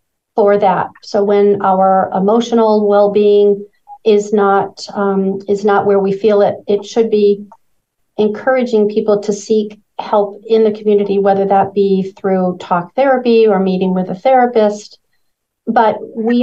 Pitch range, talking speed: 195-220 Hz, 145 wpm